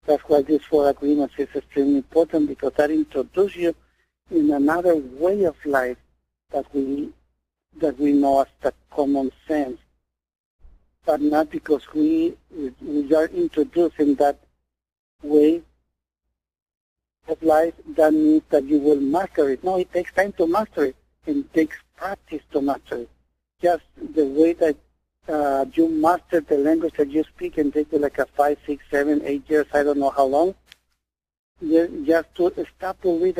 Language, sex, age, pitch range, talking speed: English, male, 60-79, 140-170 Hz, 160 wpm